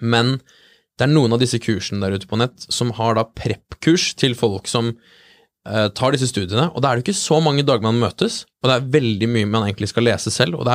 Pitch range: 105-125 Hz